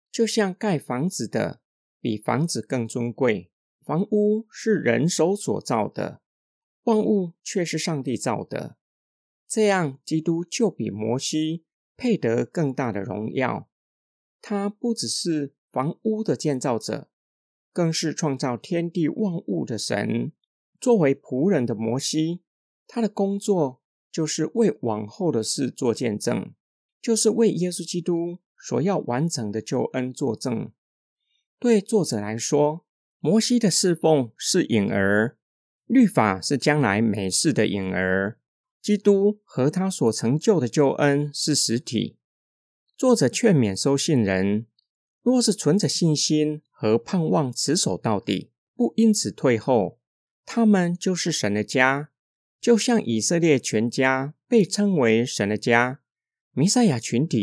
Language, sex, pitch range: Chinese, male, 120-200 Hz